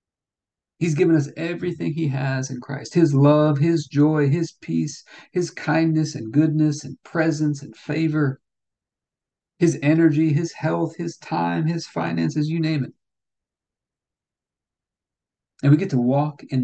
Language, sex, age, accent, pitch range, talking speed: English, male, 50-69, American, 130-155 Hz, 140 wpm